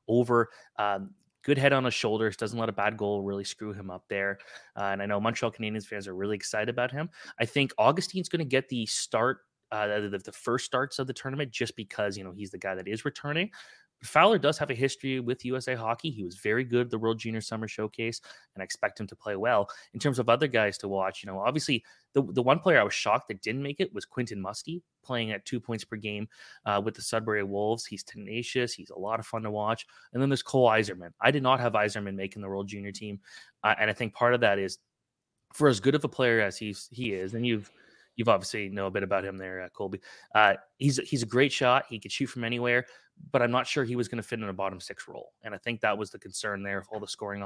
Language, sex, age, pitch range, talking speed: English, male, 20-39, 100-125 Hz, 260 wpm